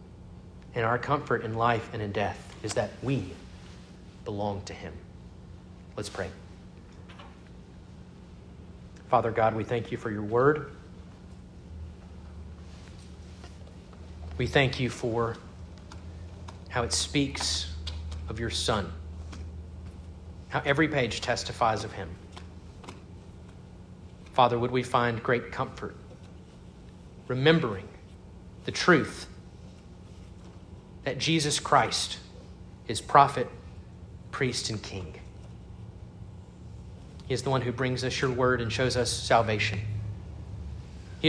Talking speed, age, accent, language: 105 wpm, 40-59, American, English